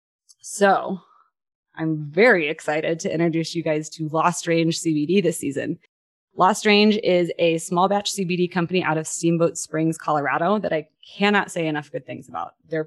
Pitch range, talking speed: 160-200 Hz, 170 wpm